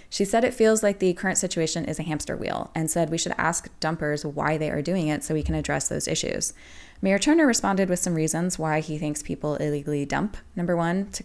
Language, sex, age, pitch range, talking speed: English, female, 20-39, 155-185 Hz, 235 wpm